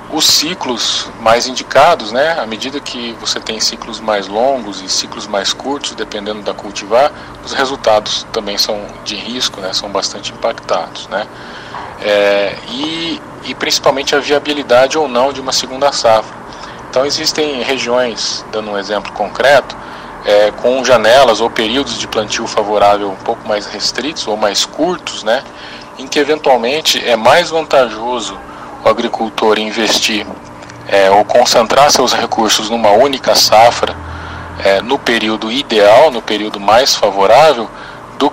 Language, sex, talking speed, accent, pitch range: Portuguese, male, 140 wpm, Brazilian, 100-125 Hz